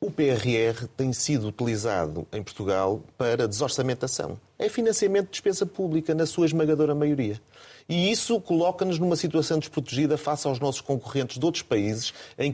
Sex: male